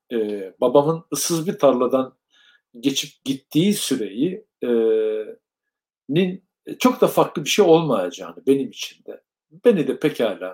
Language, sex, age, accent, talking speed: Turkish, male, 60-79, native, 125 wpm